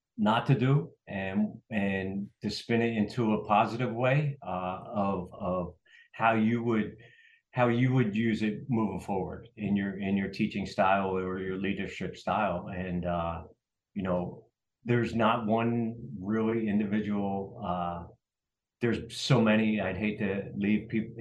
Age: 40-59